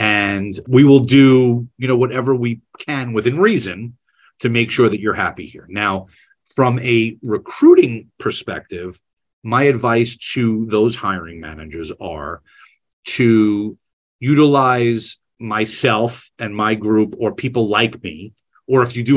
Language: English